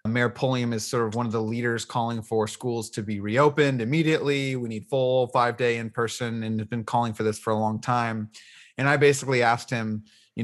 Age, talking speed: 30-49, 215 wpm